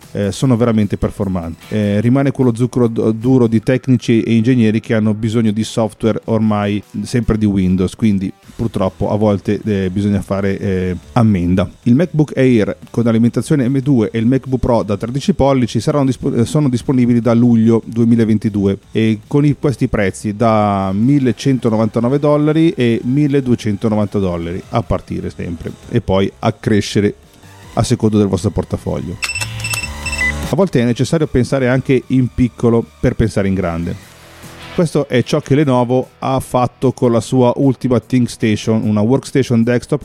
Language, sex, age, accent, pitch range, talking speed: Italian, male, 30-49, native, 105-130 Hz, 150 wpm